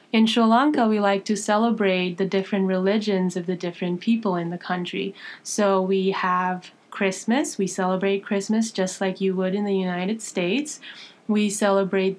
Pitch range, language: 190-220 Hz, English